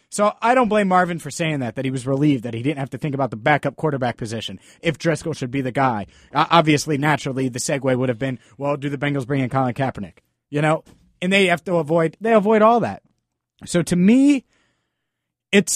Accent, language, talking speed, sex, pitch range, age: American, English, 225 wpm, male, 125-165 Hz, 30-49